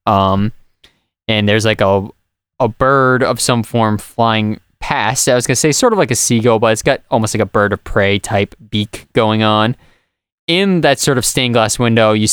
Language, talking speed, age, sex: English, 210 wpm, 20-39, male